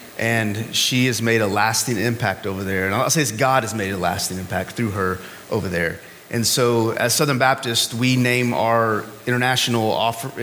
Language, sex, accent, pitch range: English, male, American, 115-145 Hz